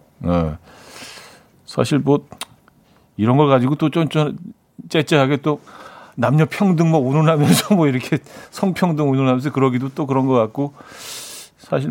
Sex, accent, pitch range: male, native, 115-155 Hz